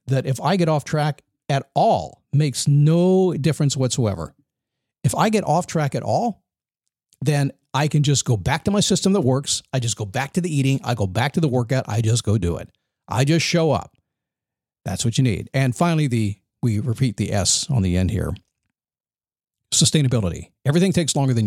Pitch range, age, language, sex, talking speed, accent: 115-155 Hz, 50-69, English, male, 200 wpm, American